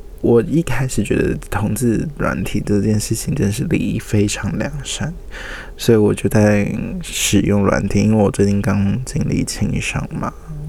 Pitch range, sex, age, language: 100-145 Hz, male, 20-39, Chinese